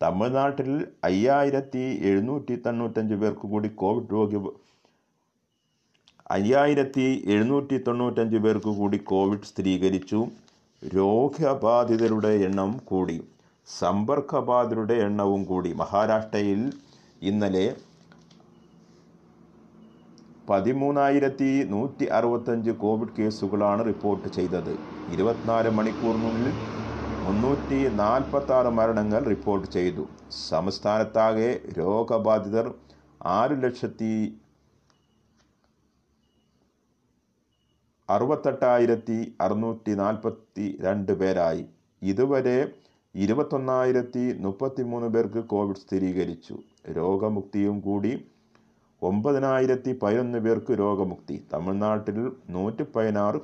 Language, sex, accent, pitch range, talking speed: Malayalam, male, native, 100-125 Hz, 65 wpm